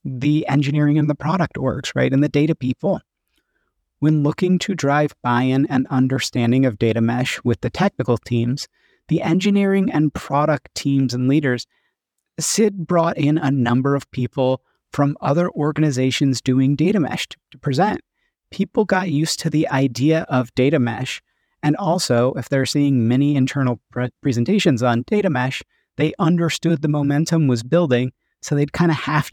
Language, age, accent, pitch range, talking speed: English, 30-49, American, 130-160 Hz, 160 wpm